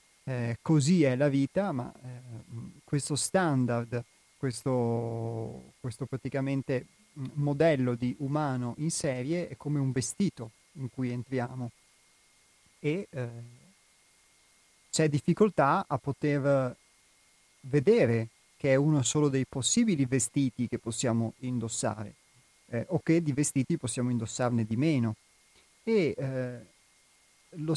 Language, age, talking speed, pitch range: Italian, 30-49, 110 wpm, 120-145 Hz